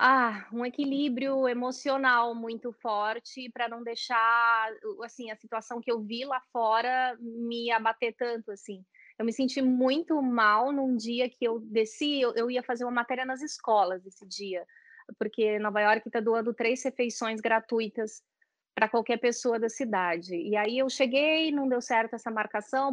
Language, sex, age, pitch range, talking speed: Portuguese, female, 20-39, 220-260 Hz, 160 wpm